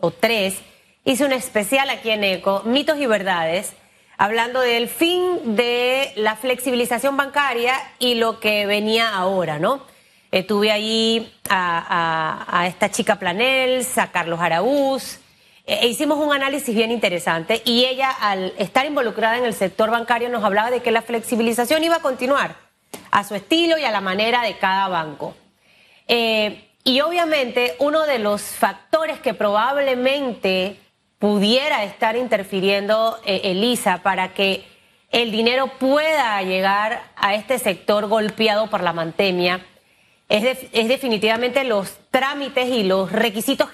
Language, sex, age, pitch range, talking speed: Spanish, female, 30-49, 205-265 Hz, 145 wpm